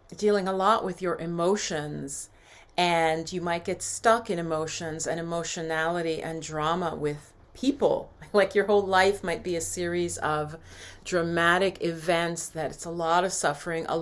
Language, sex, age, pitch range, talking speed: English, female, 40-59, 160-185 Hz, 160 wpm